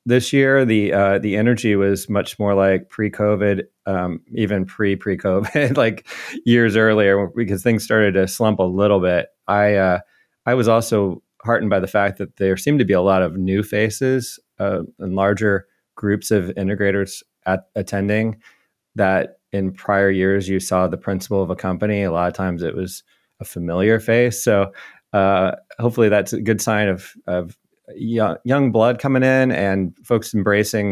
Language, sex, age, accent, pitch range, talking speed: English, male, 30-49, American, 95-115 Hz, 170 wpm